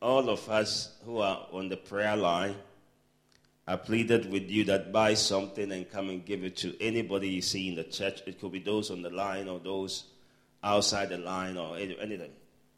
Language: English